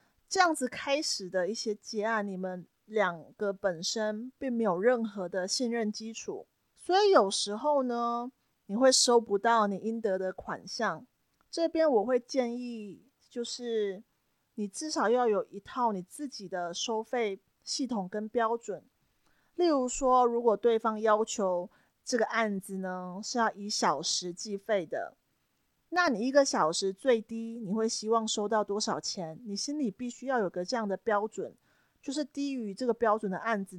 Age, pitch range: 30-49, 200-245 Hz